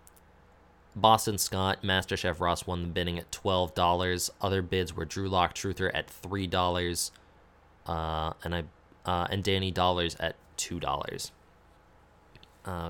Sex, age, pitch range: male, 20-39, 80-95 Hz